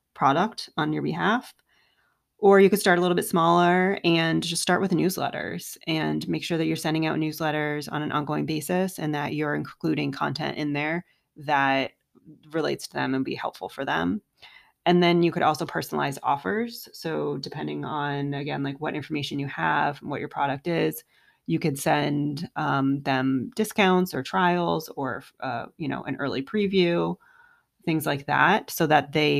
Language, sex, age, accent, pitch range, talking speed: English, female, 30-49, American, 140-170 Hz, 180 wpm